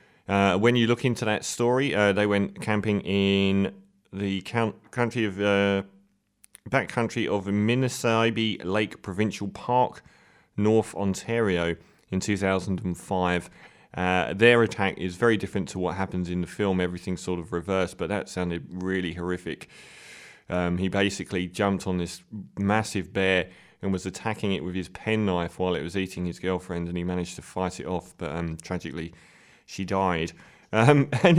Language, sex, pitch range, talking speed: English, male, 95-115 Hz, 155 wpm